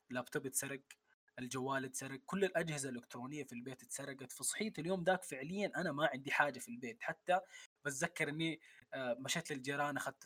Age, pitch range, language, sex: 20-39, 135-175 Hz, Arabic, male